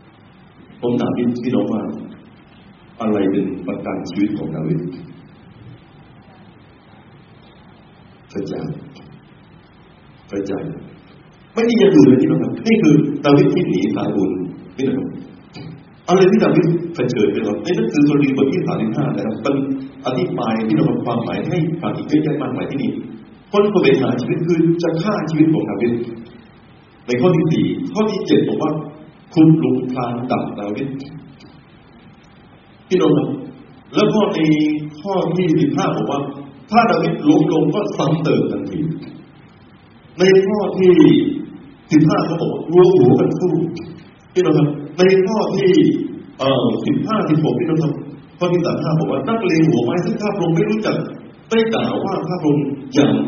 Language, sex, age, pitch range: Thai, male, 60-79, 140-190 Hz